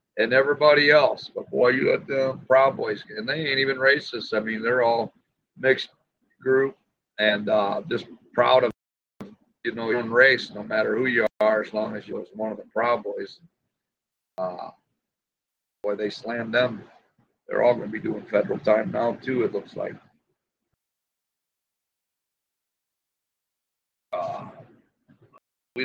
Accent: American